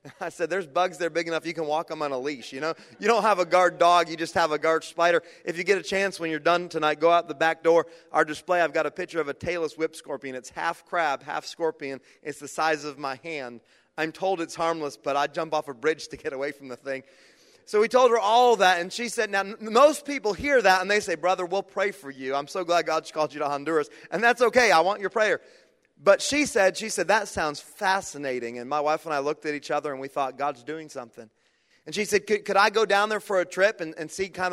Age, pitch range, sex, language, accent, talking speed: 30-49, 155-195 Hz, male, English, American, 275 wpm